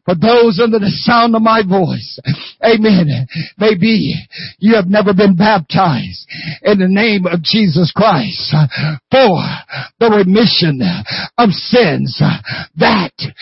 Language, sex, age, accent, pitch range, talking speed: English, male, 50-69, American, 190-275 Hz, 120 wpm